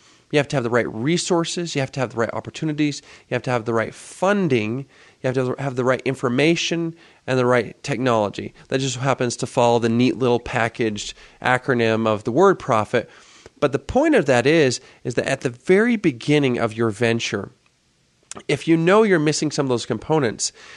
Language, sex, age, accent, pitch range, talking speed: English, male, 30-49, American, 120-165 Hz, 200 wpm